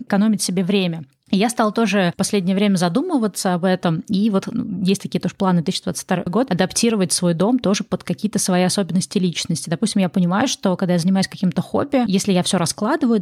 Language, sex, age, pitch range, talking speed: Russian, female, 20-39, 180-210 Hz, 195 wpm